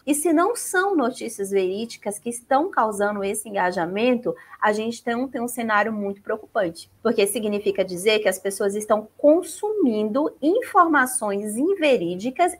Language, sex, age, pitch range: Portuguese, female, 20-39, 205-295 Hz